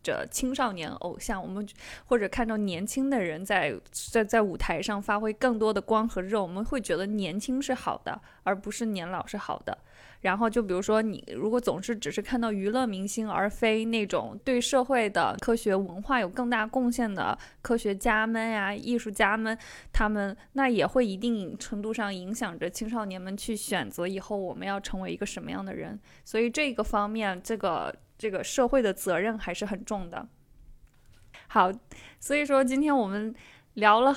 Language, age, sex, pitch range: Chinese, 20-39, female, 200-250 Hz